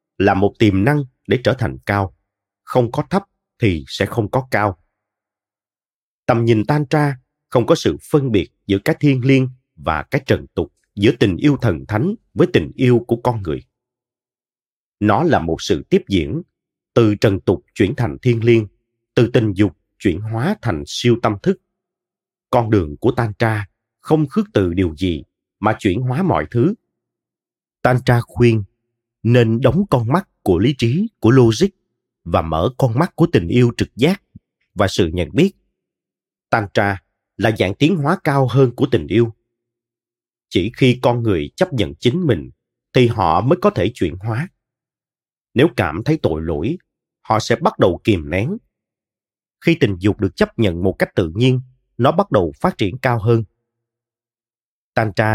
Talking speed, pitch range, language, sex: 175 wpm, 105-135 Hz, Vietnamese, male